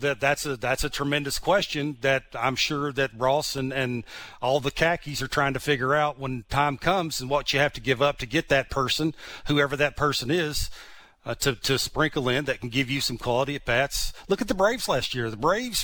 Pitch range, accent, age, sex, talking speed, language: 135-160 Hz, American, 40-59, male, 230 wpm, English